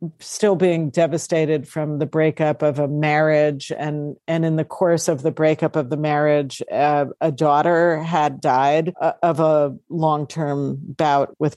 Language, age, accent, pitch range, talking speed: English, 50-69, American, 145-175 Hz, 155 wpm